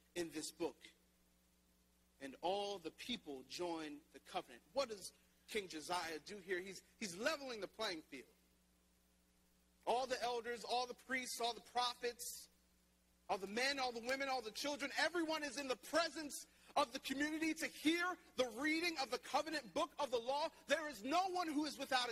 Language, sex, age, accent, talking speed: English, male, 40-59, American, 180 wpm